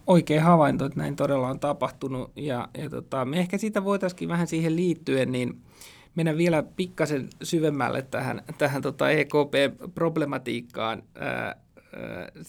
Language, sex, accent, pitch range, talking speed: Finnish, male, native, 130-165 Hz, 135 wpm